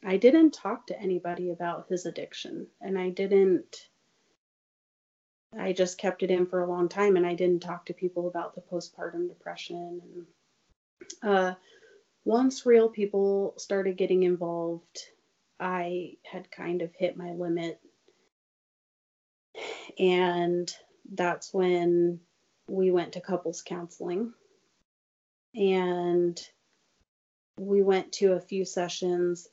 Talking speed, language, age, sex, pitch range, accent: 120 wpm, English, 30-49, female, 175-195 Hz, American